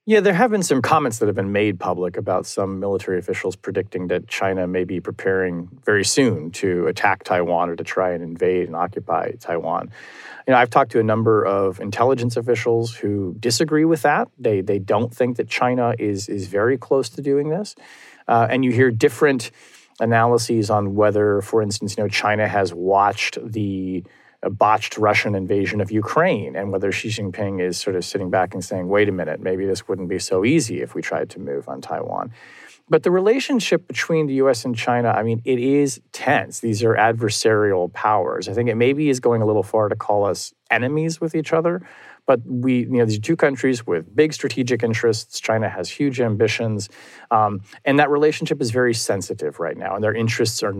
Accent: American